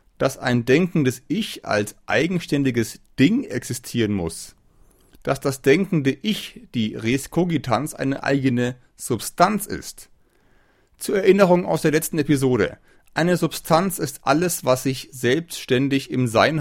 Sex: male